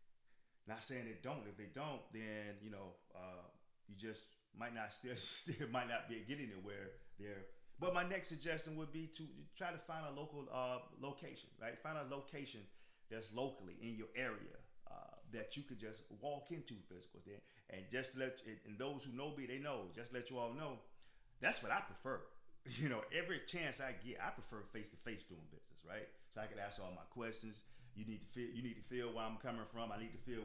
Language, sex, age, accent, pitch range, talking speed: English, male, 30-49, American, 100-125 Hz, 215 wpm